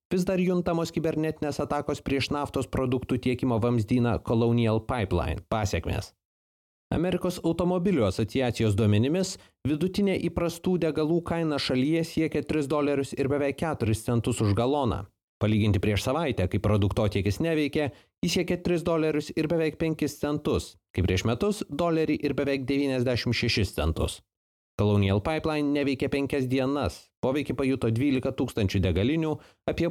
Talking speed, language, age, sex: 130 wpm, English, 30-49, male